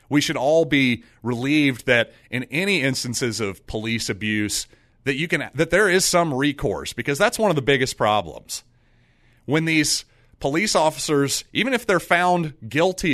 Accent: American